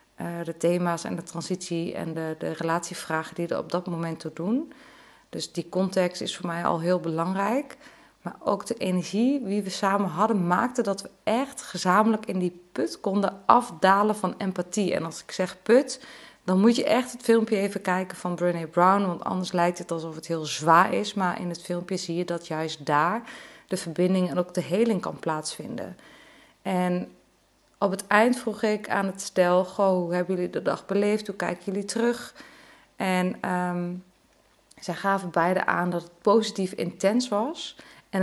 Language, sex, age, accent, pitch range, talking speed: Dutch, female, 20-39, Dutch, 175-215 Hz, 185 wpm